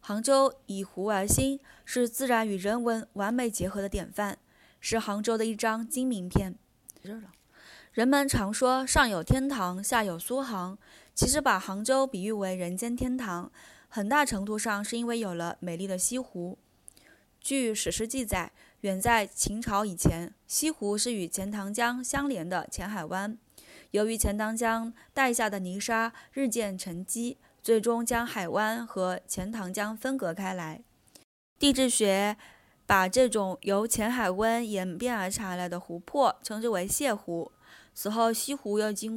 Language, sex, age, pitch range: Chinese, female, 20-39, 195-240 Hz